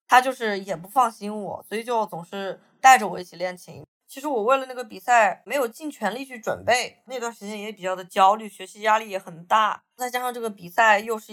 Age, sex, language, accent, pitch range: 20-39, female, Chinese, native, 185-235 Hz